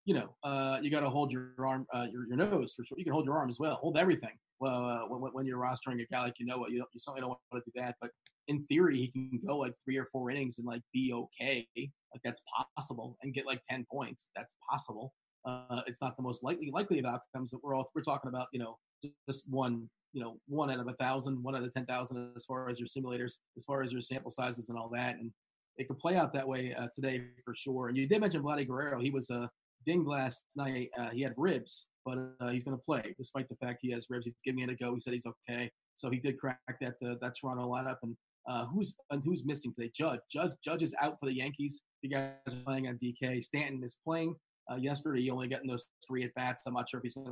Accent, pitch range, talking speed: American, 125-135 Hz, 265 wpm